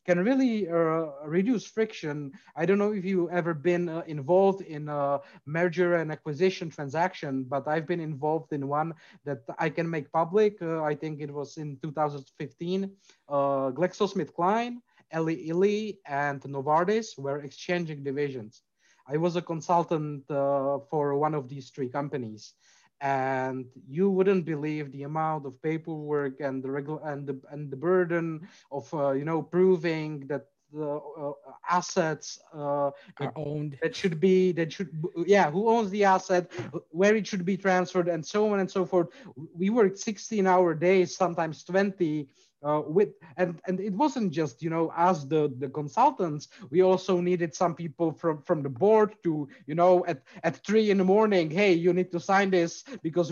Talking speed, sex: 170 wpm, male